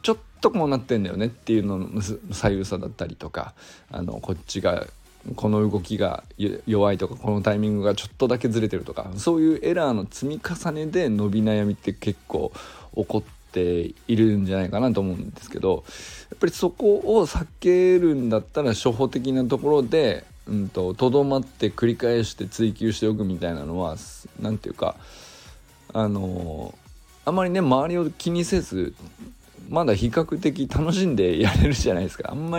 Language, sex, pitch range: Japanese, male, 100-135 Hz